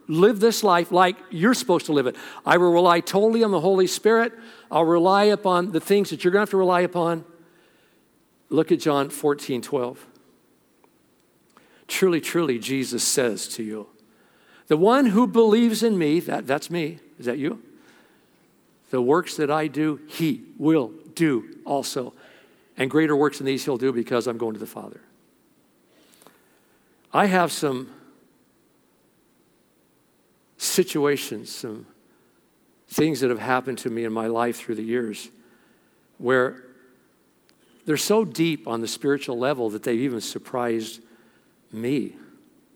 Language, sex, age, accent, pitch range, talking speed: English, male, 50-69, American, 120-175 Hz, 145 wpm